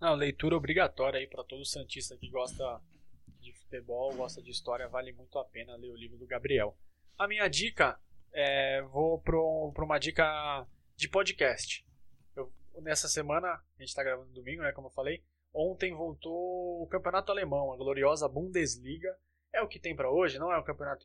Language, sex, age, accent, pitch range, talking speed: Portuguese, male, 20-39, Brazilian, 130-150 Hz, 185 wpm